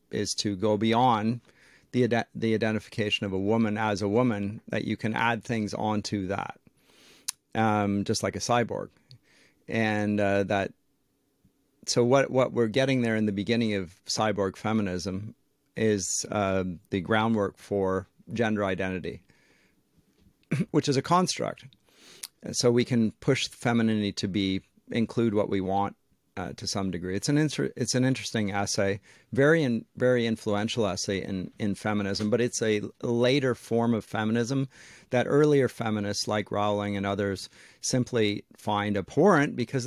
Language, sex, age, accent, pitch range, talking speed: English, male, 40-59, American, 100-120 Hz, 150 wpm